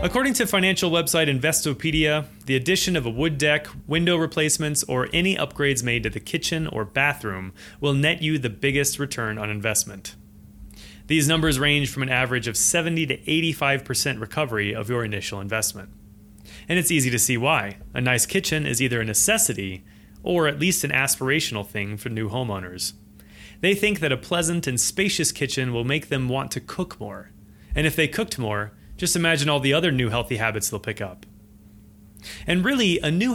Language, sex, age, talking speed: English, male, 30-49, 185 wpm